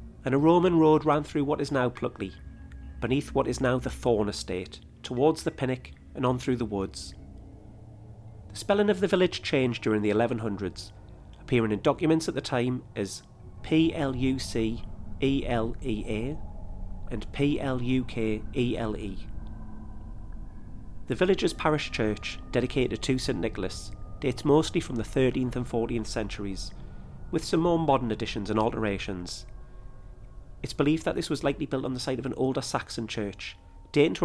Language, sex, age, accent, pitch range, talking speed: English, male, 40-59, British, 100-135 Hz, 145 wpm